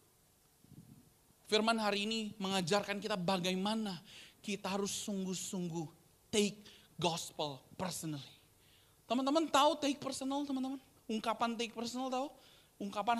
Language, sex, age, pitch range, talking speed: Indonesian, male, 20-39, 165-235 Hz, 100 wpm